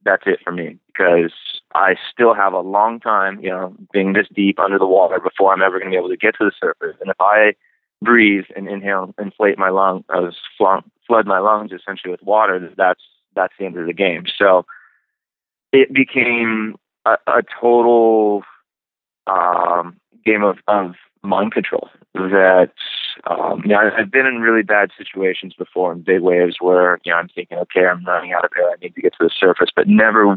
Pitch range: 90-105 Hz